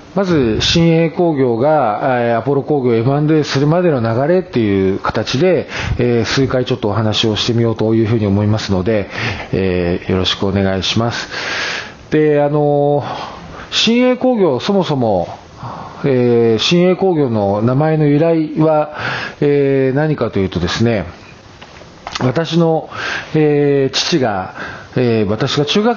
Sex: male